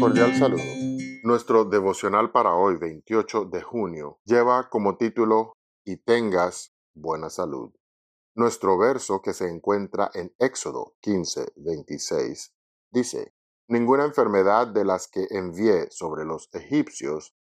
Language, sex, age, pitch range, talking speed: Spanish, male, 50-69, 100-140 Hz, 115 wpm